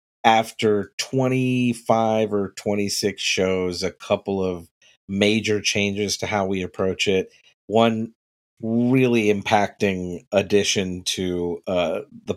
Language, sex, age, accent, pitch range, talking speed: English, male, 40-59, American, 90-115 Hz, 105 wpm